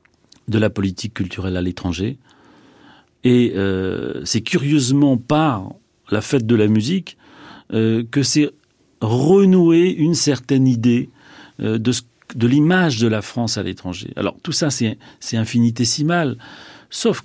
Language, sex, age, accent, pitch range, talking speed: French, male, 40-59, French, 110-145 Hz, 140 wpm